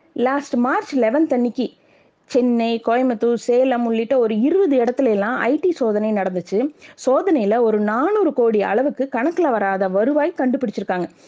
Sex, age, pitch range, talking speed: female, 20-39, 200-275 Hz, 130 wpm